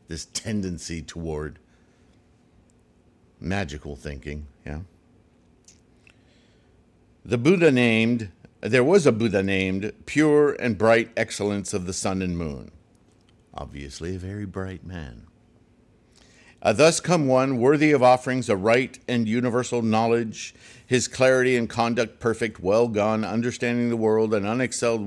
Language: English